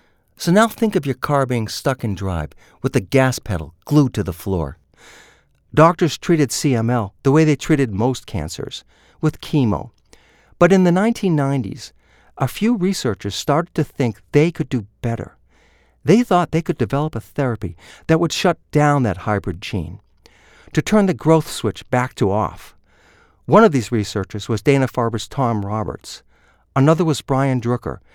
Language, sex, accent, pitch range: English, male, American, 110-160 Hz